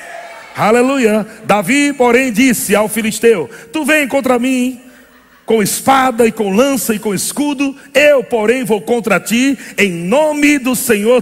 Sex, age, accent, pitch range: male, 60-79, Brazilian, 210-265 Hz